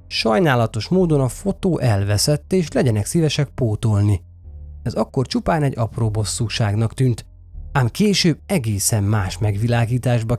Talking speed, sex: 120 wpm, male